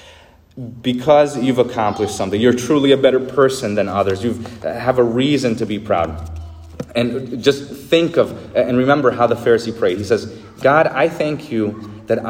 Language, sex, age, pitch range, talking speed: English, male, 30-49, 90-125 Hz, 170 wpm